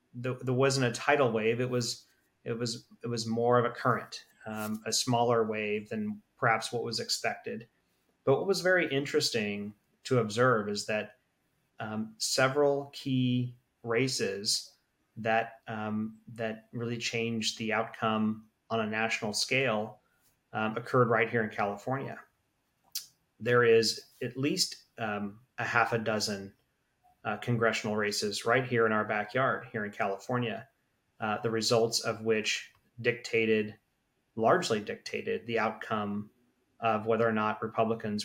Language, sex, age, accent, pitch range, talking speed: English, male, 30-49, American, 110-120 Hz, 140 wpm